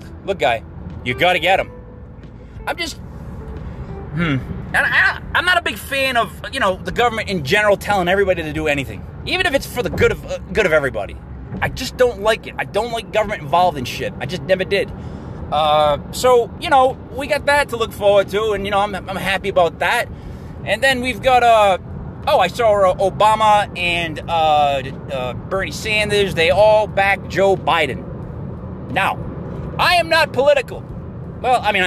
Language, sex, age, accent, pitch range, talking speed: English, male, 30-49, American, 175-235 Hz, 190 wpm